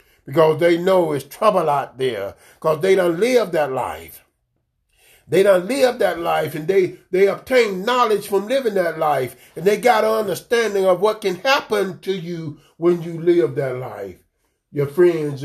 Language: English